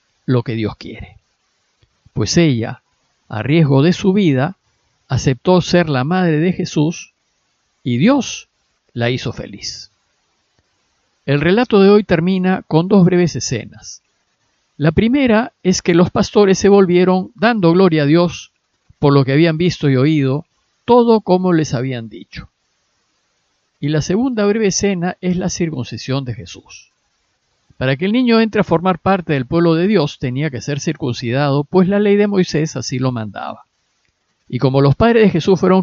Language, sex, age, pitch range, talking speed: Spanish, male, 50-69, 130-185 Hz, 160 wpm